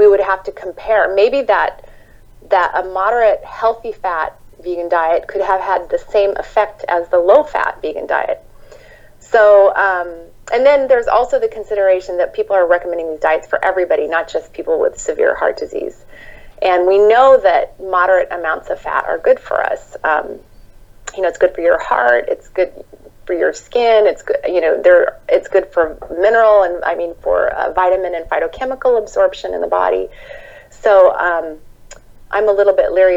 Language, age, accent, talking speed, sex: English, 30-49, American, 180 wpm, female